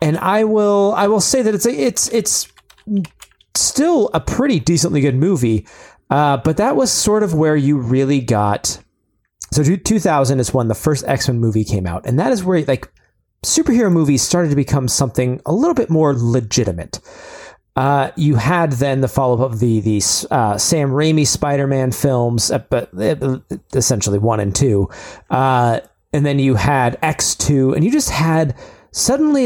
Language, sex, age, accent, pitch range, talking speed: English, male, 30-49, American, 120-175 Hz, 175 wpm